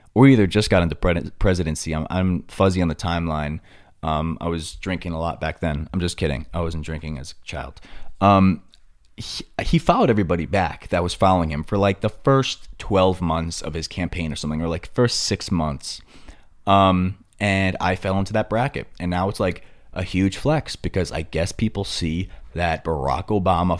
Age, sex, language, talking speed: 20-39, male, English, 195 wpm